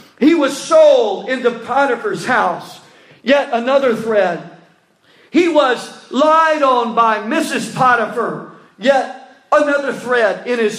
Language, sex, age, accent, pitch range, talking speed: English, male, 40-59, American, 230-285 Hz, 115 wpm